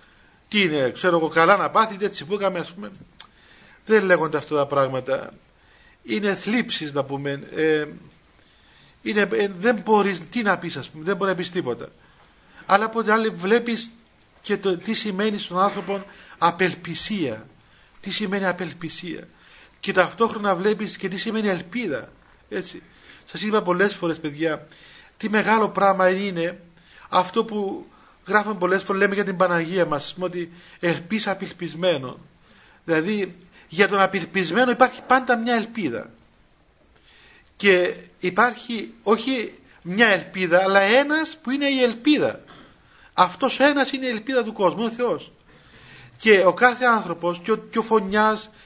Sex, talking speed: male, 145 wpm